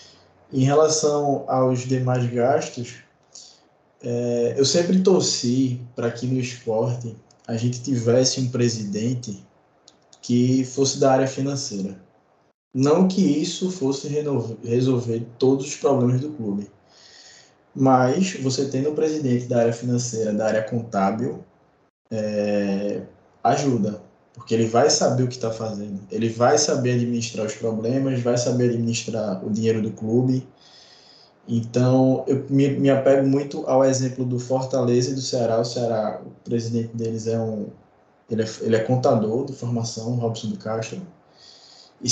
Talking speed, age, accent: 140 wpm, 20-39, Brazilian